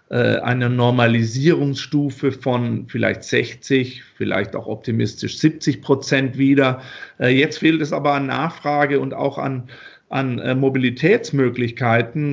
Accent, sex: German, male